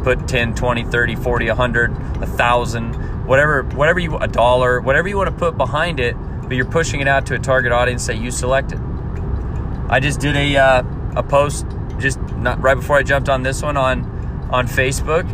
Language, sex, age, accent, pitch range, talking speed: English, male, 30-49, American, 115-135 Hz, 190 wpm